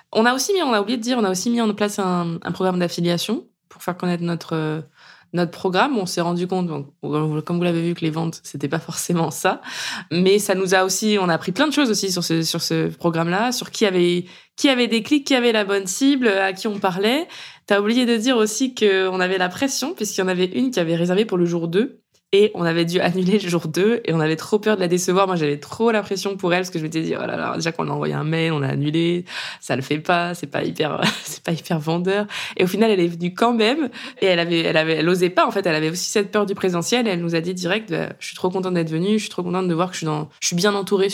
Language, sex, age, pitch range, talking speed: French, female, 20-39, 165-205 Hz, 285 wpm